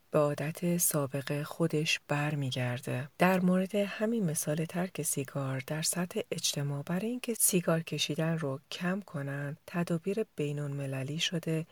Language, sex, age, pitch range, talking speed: Persian, female, 40-59, 145-190 Hz, 130 wpm